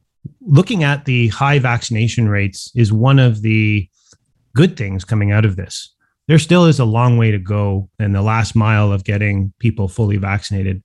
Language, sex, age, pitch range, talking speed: English, male, 30-49, 100-120 Hz, 185 wpm